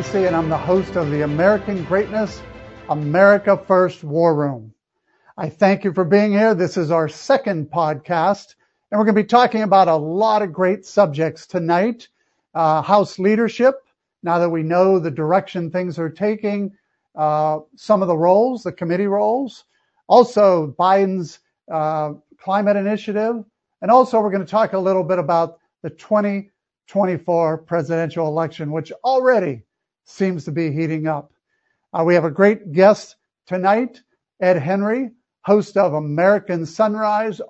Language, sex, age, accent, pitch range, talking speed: English, male, 50-69, American, 165-210 Hz, 150 wpm